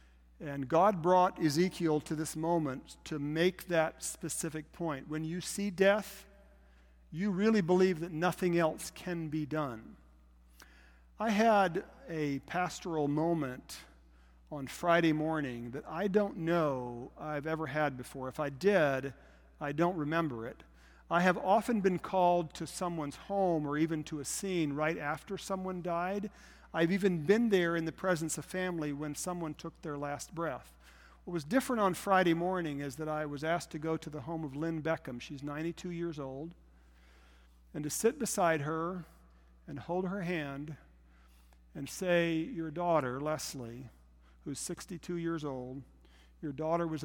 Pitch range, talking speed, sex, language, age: 125-175 Hz, 160 wpm, male, English, 50-69